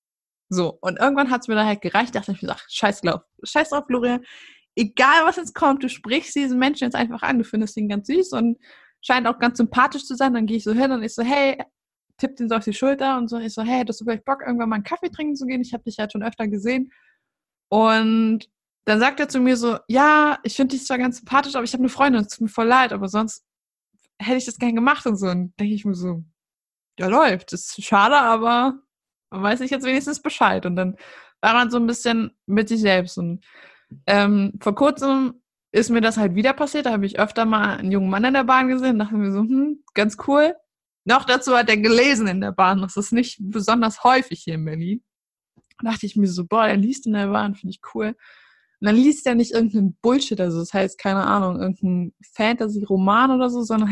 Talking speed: 245 wpm